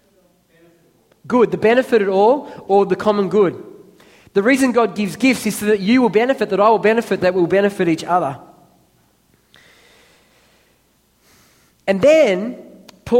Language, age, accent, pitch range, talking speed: English, 20-39, Australian, 170-220 Hz, 145 wpm